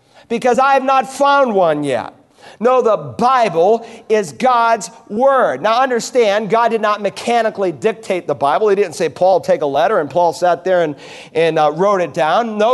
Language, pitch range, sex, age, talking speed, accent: English, 195-255 Hz, male, 40-59, 190 wpm, American